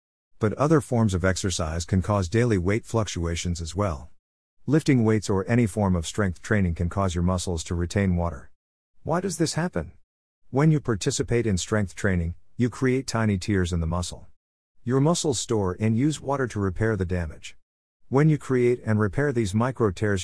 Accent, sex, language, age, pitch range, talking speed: American, male, English, 50-69, 90-115 Hz, 185 wpm